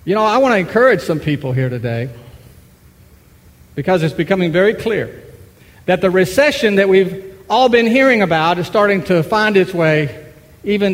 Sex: male